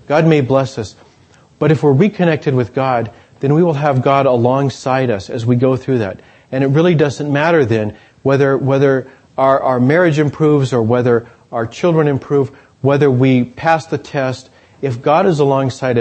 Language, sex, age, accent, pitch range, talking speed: English, male, 40-59, American, 115-145 Hz, 180 wpm